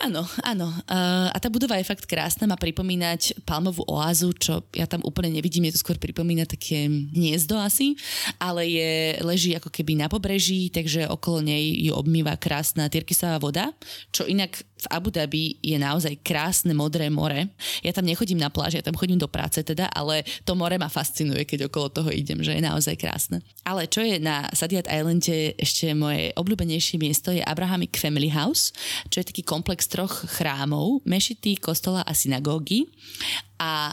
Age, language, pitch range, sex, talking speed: 20-39, Slovak, 150-180 Hz, female, 175 wpm